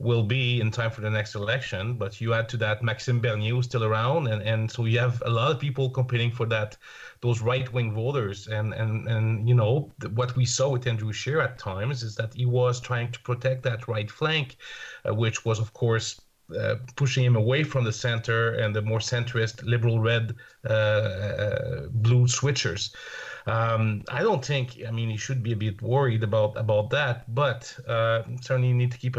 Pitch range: 115-130 Hz